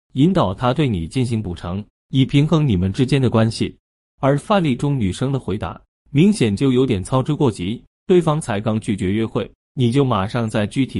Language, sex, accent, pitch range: Chinese, male, native, 100-140 Hz